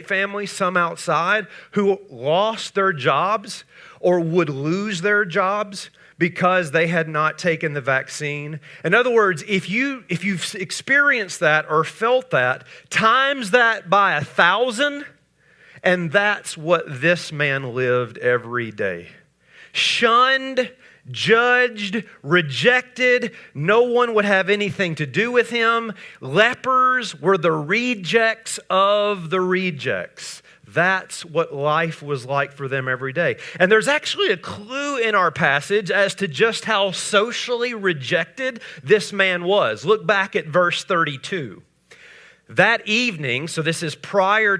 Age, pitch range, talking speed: 40-59, 160-220 Hz, 135 wpm